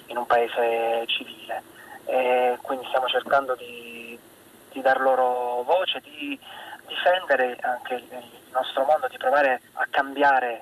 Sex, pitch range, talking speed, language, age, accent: male, 120-145 Hz, 130 wpm, Italian, 20-39, native